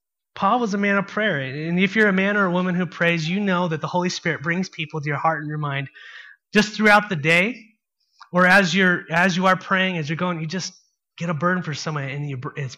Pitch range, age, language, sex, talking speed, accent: 135-175 Hz, 30-49, English, male, 255 wpm, American